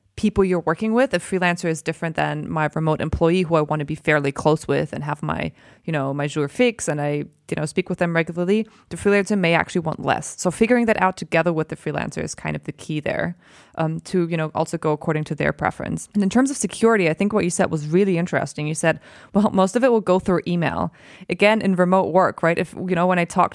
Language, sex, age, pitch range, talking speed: German, female, 20-39, 165-195 Hz, 255 wpm